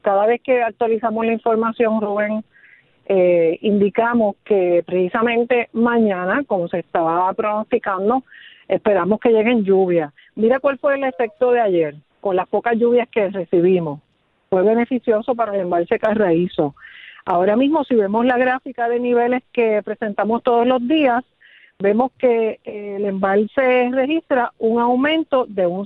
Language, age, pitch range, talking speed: Spanish, 50-69, 200-250 Hz, 145 wpm